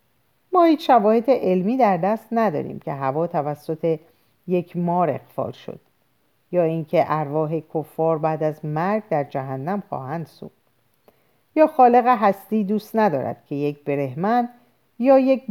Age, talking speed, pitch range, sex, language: 50-69, 135 wpm, 140-205 Hz, female, Persian